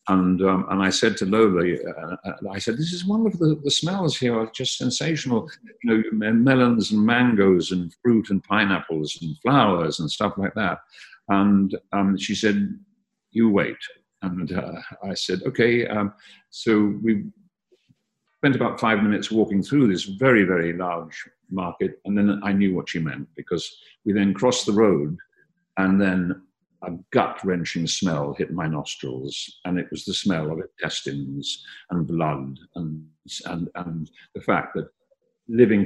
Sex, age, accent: male, 50-69, British